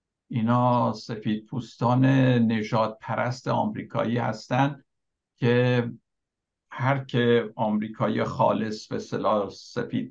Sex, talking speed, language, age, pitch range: male, 90 wpm, Persian, 60-79, 115-140 Hz